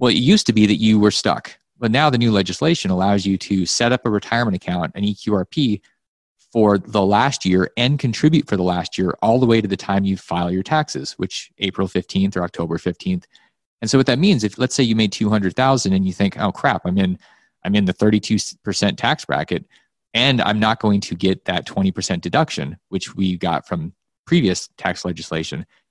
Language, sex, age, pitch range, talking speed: English, male, 30-49, 95-115 Hz, 210 wpm